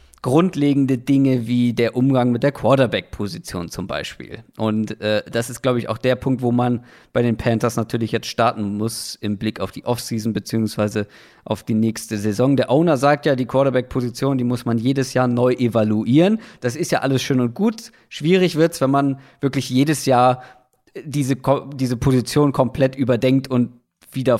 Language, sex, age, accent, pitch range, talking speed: German, male, 40-59, German, 120-150 Hz, 180 wpm